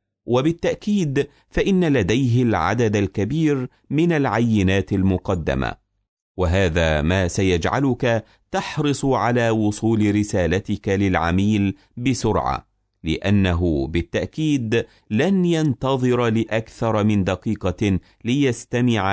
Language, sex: Arabic, male